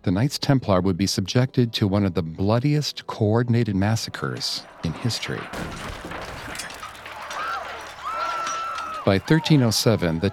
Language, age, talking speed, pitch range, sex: English, 50-69, 105 wpm, 95-120 Hz, male